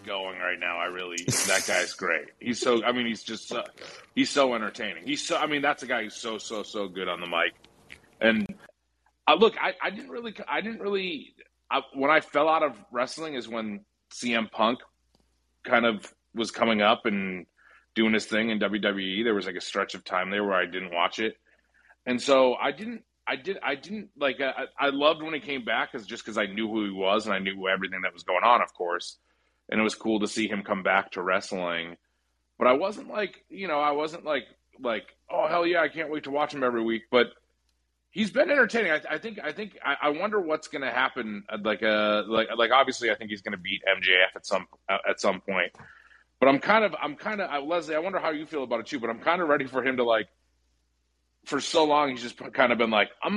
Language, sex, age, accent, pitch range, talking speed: English, male, 30-49, American, 100-160 Hz, 235 wpm